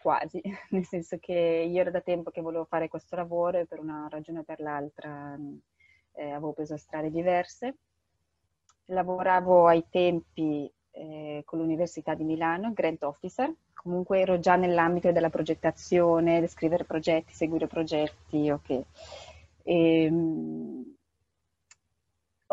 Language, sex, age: Italian, female, 20-39